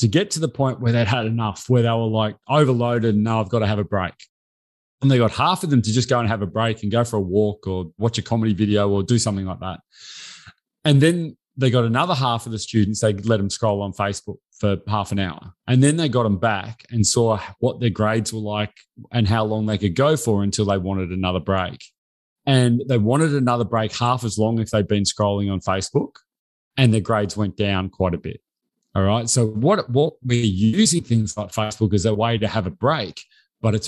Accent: Australian